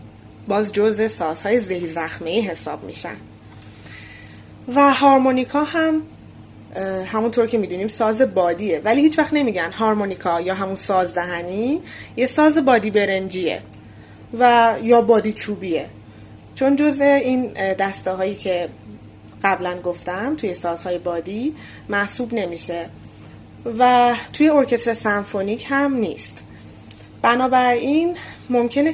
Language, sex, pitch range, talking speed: Persian, female, 165-235 Hz, 110 wpm